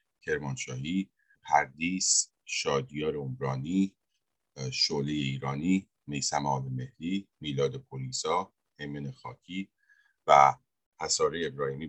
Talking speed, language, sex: 80 wpm, Persian, male